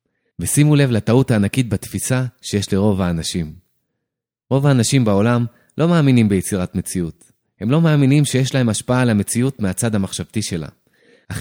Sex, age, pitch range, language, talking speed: male, 20-39, 100-135 Hz, Hebrew, 140 wpm